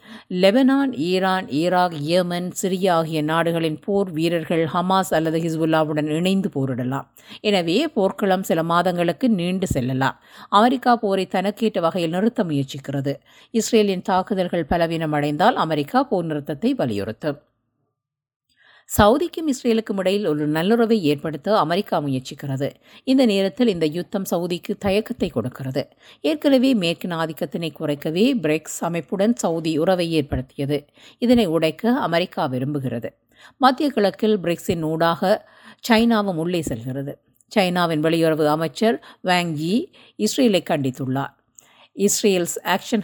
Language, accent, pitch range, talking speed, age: Tamil, native, 155-205 Hz, 105 wpm, 50-69